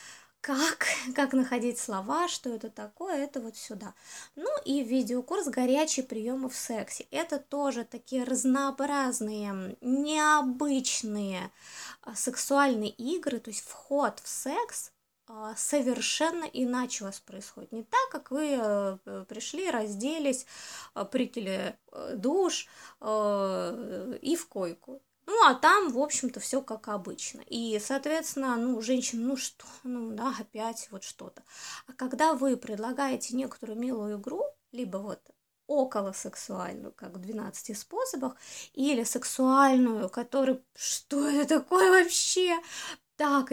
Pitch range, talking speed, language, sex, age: 220-285 Hz, 120 wpm, Russian, female, 20-39